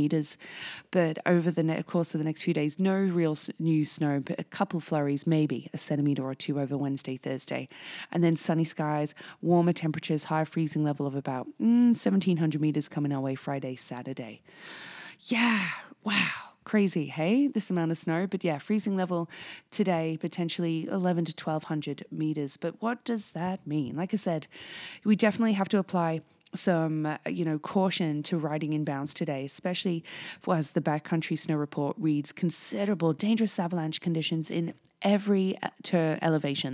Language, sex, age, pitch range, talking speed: English, female, 20-39, 150-185 Hz, 170 wpm